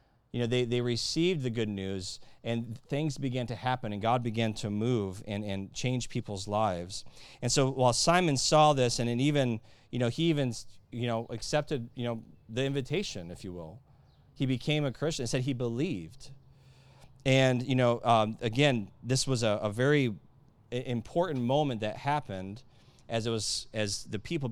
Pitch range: 110-135 Hz